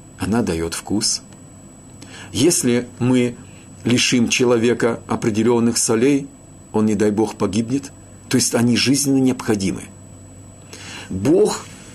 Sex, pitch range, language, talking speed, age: male, 100-130 Hz, Russian, 100 wpm, 50-69